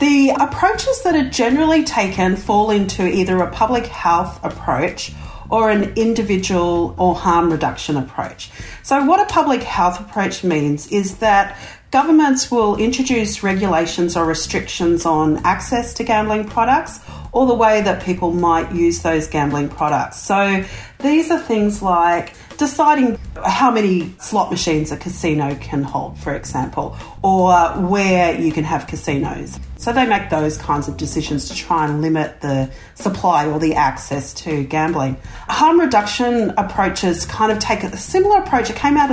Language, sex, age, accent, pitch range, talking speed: English, female, 40-59, Australian, 160-225 Hz, 155 wpm